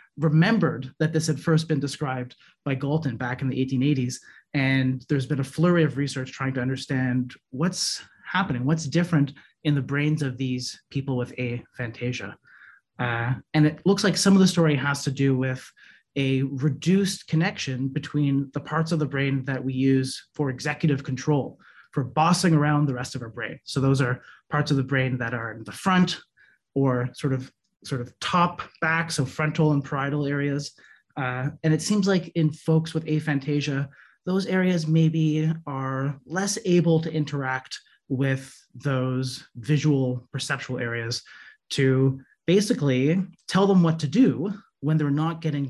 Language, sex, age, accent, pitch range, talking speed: English, male, 30-49, American, 130-160 Hz, 170 wpm